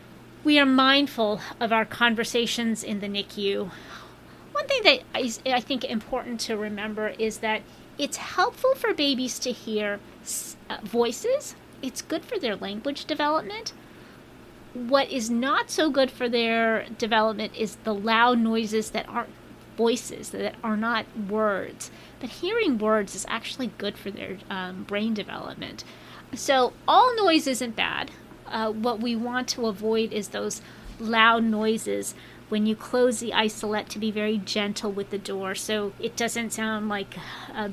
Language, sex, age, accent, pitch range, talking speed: English, female, 30-49, American, 210-250 Hz, 150 wpm